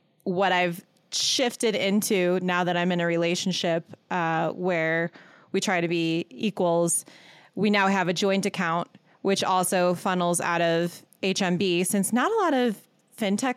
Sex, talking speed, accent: female, 155 wpm, American